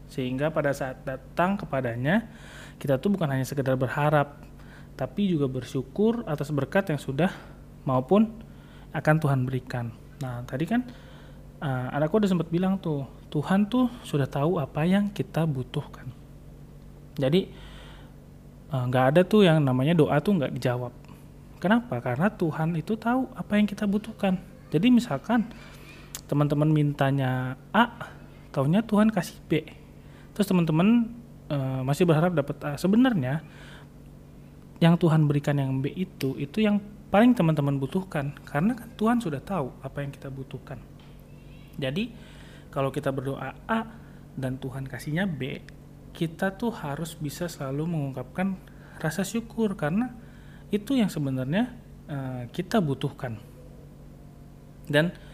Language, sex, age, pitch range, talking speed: Indonesian, male, 30-49, 135-195 Hz, 130 wpm